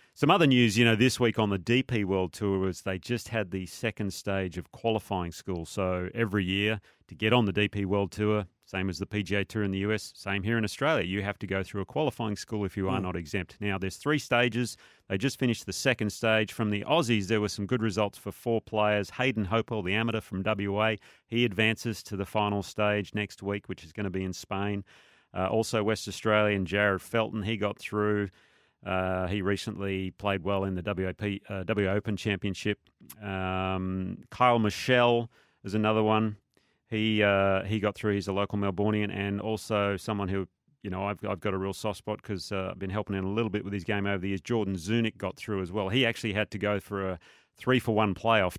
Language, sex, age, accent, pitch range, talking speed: English, male, 30-49, Australian, 95-110 Hz, 220 wpm